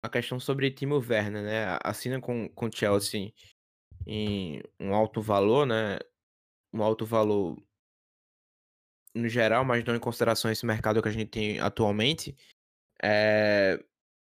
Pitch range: 105-125 Hz